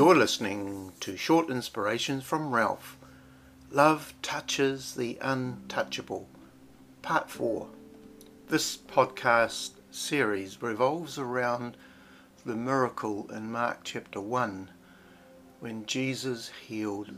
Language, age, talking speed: English, 60-79, 95 wpm